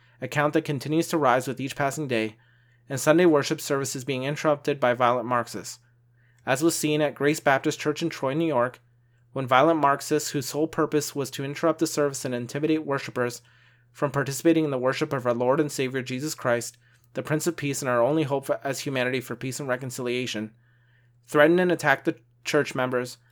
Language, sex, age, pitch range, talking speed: English, male, 30-49, 120-150 Hz, 195 wpm